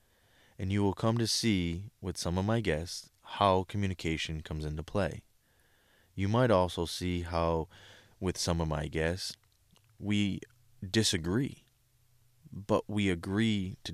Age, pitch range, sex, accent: 20-39, 90-110 Hz, male, American